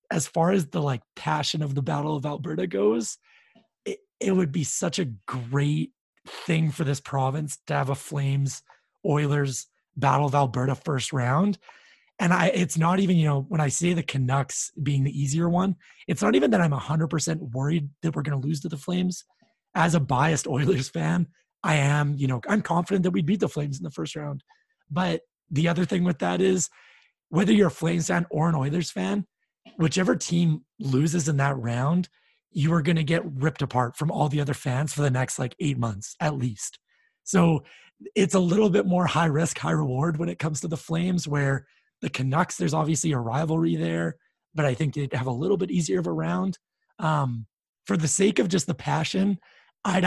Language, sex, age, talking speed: English, male, 30-49, 205 wpm